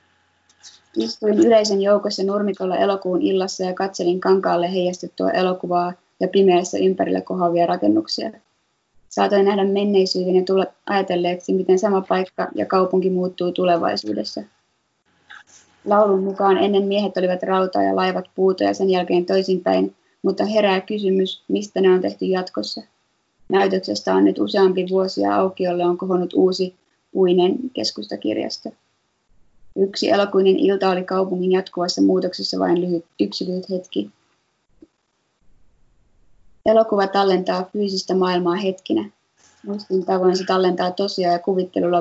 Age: 20-39